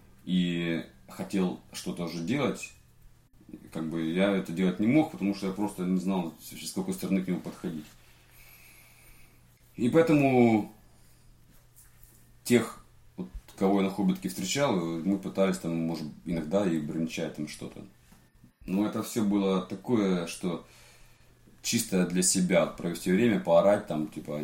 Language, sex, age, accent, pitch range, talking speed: Ukrainian, male, 30-49, native, 80-105 Hz, 135 wpm